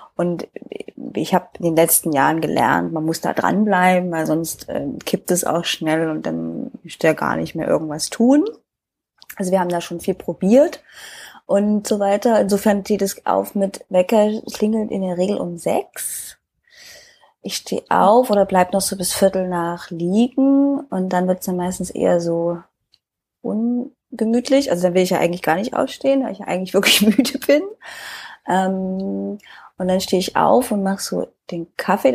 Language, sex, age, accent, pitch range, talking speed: German, female, 20-39, German, 180-245 Hz, 180 wpm